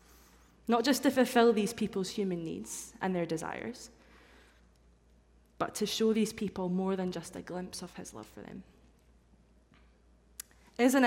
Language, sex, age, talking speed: English, female, 20-39, 145 wpm